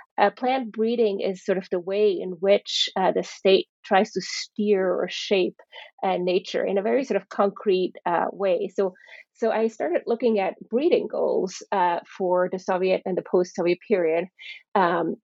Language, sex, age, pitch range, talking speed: English, female, 30-49, 185-220 Hz, 175 wpm